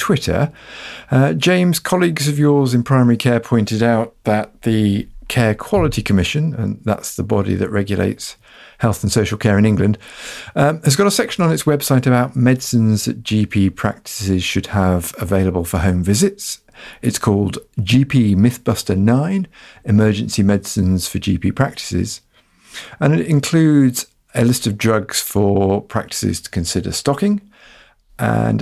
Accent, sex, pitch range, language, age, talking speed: British, male, 100-130 Hz, English, 50-69, 145 wpm